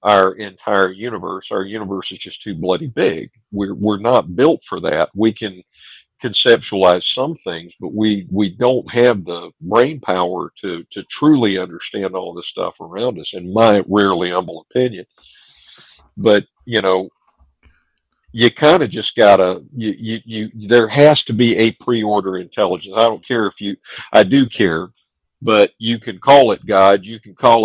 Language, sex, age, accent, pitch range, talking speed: English, male, 50-69, American, 95-120 Hz, 170 wpm